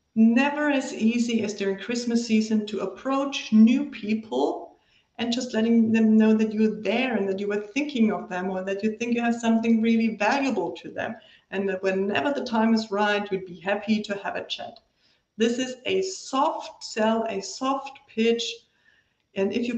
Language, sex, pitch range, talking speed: German, female, 195-235 Hz, 190 wpm